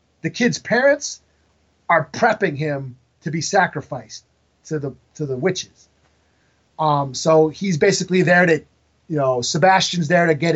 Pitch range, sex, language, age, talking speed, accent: 150-185 Hz, male, English, 30-49, 150 wpm, American